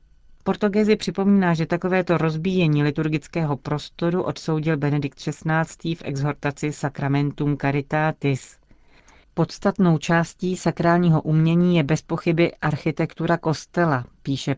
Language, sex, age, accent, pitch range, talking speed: Czech, female, 40-59, native, 145-165 Hz, 100 wpm